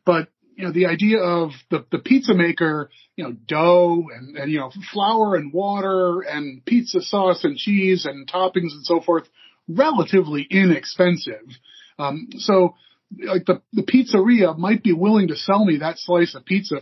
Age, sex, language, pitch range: 30-49, male, English, 160-200 Hz